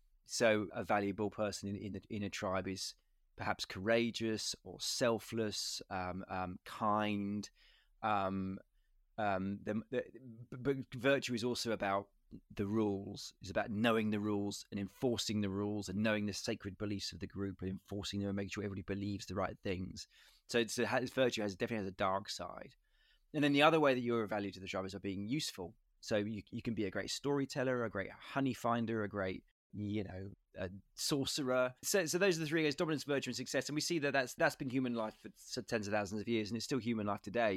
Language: English